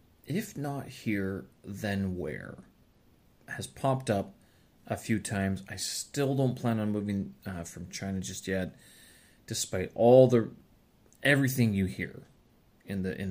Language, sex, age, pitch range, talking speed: English, male, 30-49, 100-135 Hz, 140 wpm